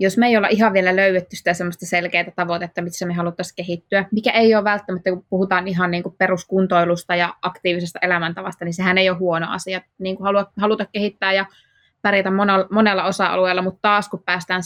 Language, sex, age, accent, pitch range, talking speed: Finnish, female, 20-39, native, 175-195 Hz, 190 wpm